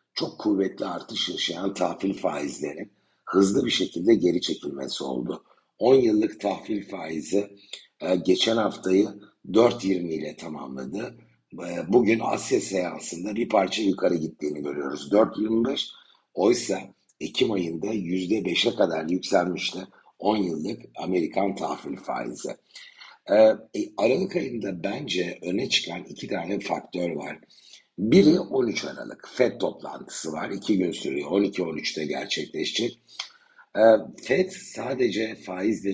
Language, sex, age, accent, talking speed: Turkish, male, 60-79, native, 110 wpm